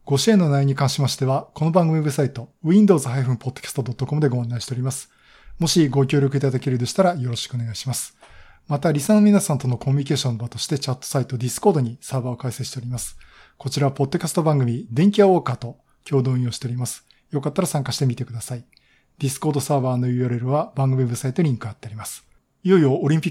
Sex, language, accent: male, Japanese, native